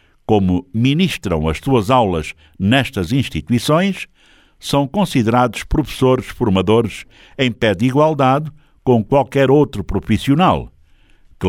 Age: 60-79